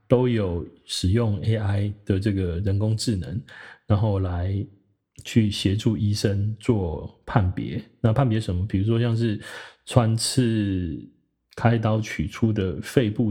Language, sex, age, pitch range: Chinese, male, 20-39, 95-115 Hz